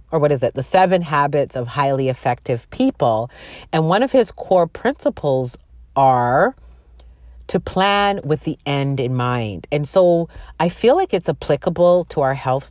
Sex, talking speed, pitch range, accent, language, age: female, 165 wpm, 130-175 Hz, American, English, 40-59